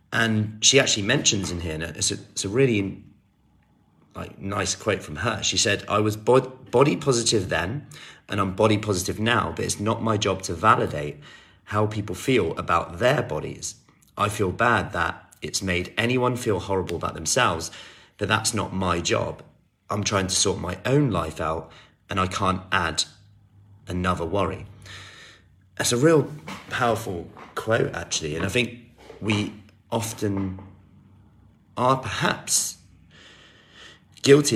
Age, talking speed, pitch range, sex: 30-49, 150 wpm, 90-110 Hz, male